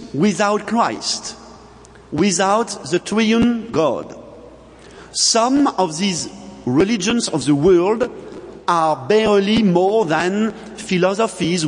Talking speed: 90 wpm